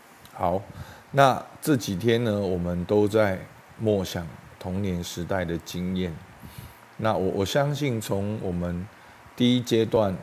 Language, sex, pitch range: Chinese, male, 90-110 Hz